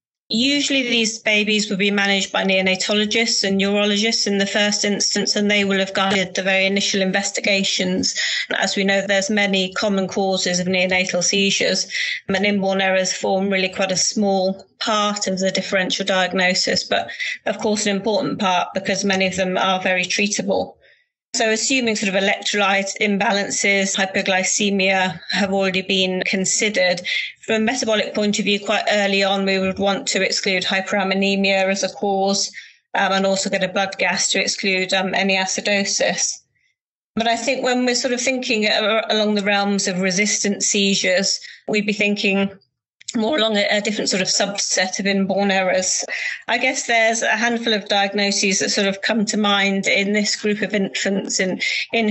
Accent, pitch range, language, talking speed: British, 195-215 Hz, English, 170 wpm